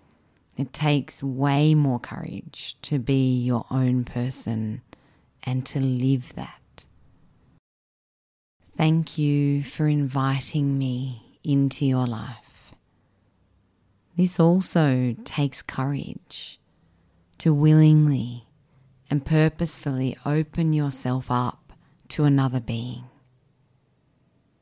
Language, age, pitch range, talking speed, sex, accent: English, 30-49, 125-150 Hz, 90 wpm, female, Australian